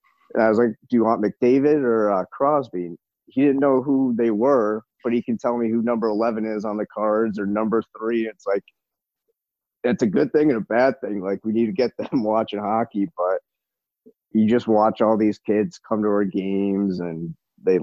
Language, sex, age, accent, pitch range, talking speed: English, male, 30-49, American, 100-120 Hz, 210 wpm